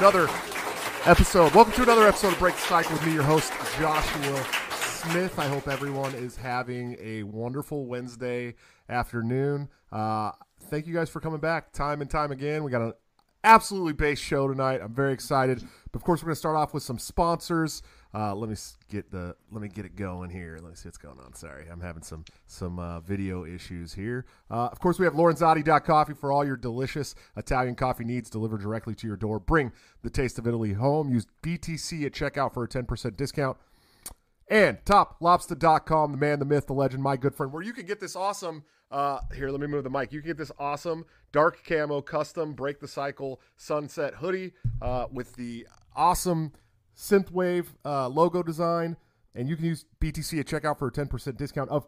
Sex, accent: male, American